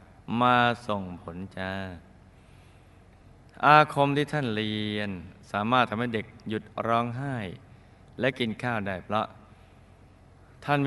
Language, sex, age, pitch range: Thai, male, 20-39, 95-125 Hz